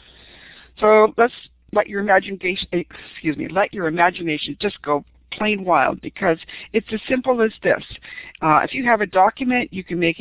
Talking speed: 170 wpm